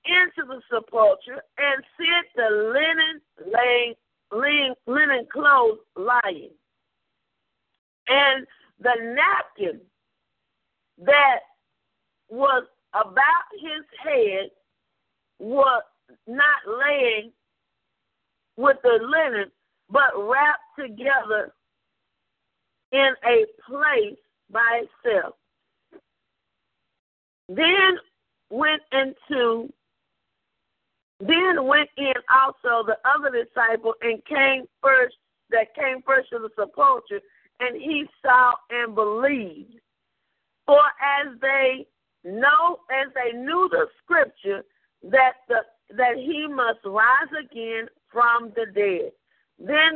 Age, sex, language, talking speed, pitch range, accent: 50-69, female, English, 95 wpm, 235-310 Hz, American